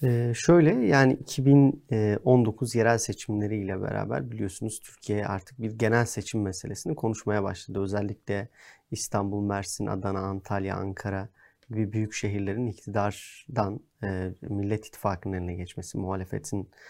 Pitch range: 100-120 Hz